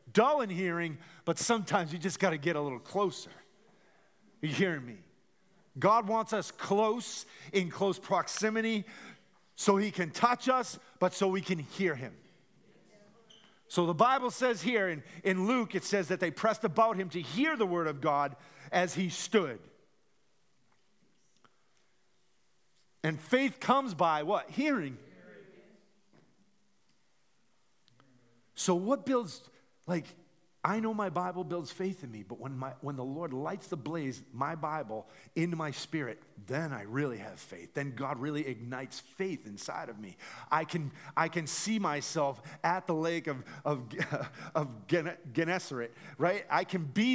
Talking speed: 155 wpm